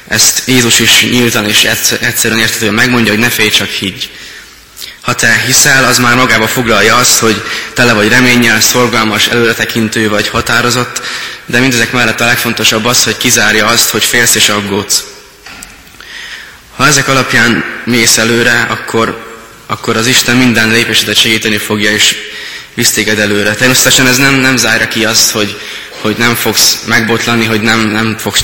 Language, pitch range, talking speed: Hungarian, 105-120 Hz, 155 wpm